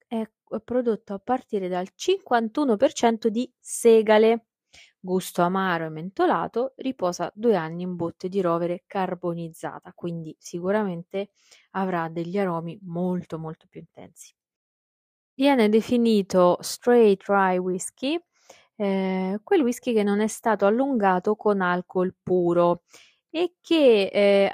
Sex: female